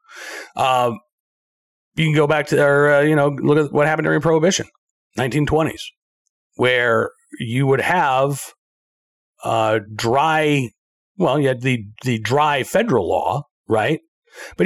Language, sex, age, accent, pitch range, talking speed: English, male, 40-59, American, 135-210 Hz, 135 wpm